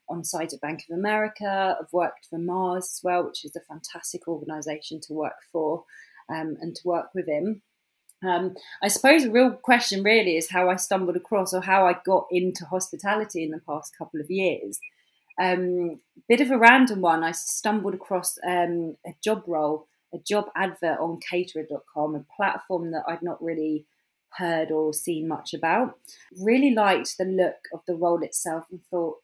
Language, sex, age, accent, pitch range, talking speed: English, female, 30-49, British, 165-195 Hz, 180 wpm